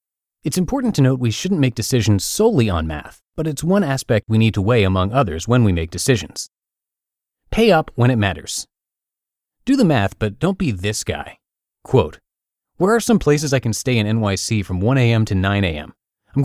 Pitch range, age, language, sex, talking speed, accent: 100-145 Hz, 30-49, English, male, 200 wpm, American